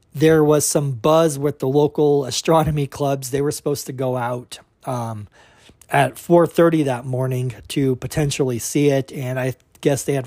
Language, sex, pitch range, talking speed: English, male, 125-150 Hz, 170 wpm